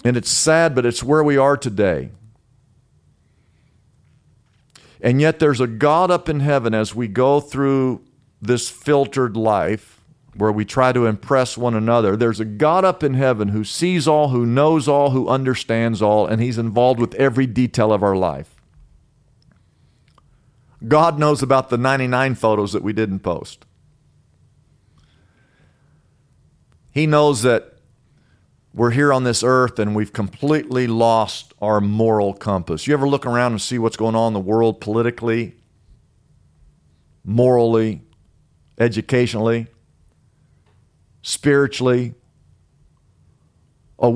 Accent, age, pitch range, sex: American, 50-69, 110-135 Hz, male